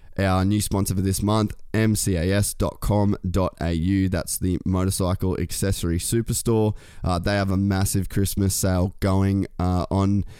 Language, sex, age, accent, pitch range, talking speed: English, male, 20-39, Australian, 90-100 Hz, 125 wpm